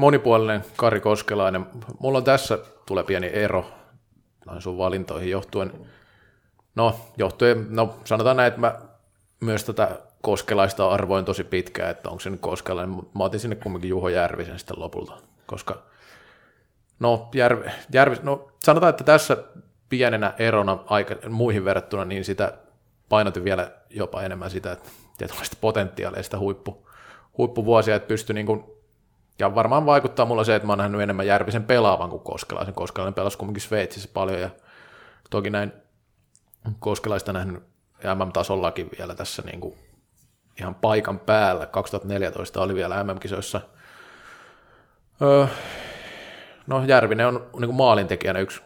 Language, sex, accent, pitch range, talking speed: Finnish, male, native, 95-115 Hz, 135 wpm